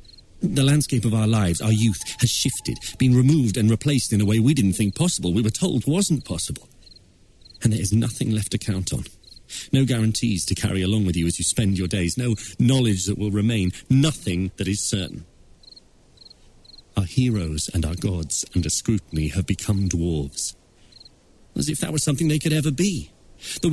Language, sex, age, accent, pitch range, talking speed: English, male, 40-59, British, 90-125 Hz, 185 wpm